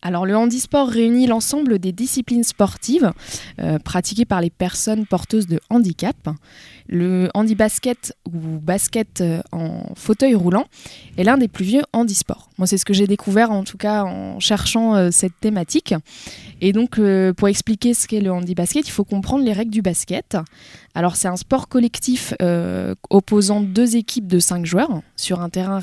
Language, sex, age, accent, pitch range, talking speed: French, female, 20-39, French, 175-230 Hz, 170 wpm